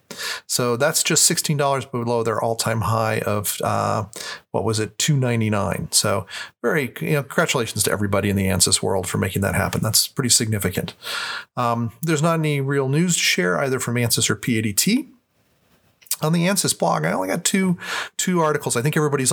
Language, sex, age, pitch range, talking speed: English, male, 40-59, 115-140 Hz, 180 wpm